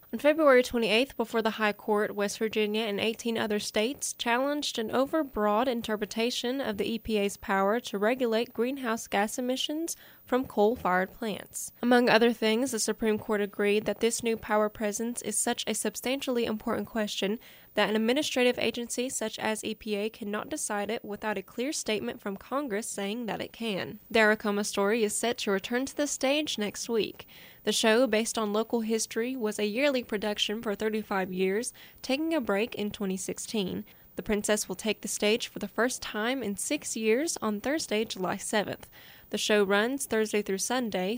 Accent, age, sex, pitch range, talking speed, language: American, 10-29, female, 210-245 Hz, 175 wpm, English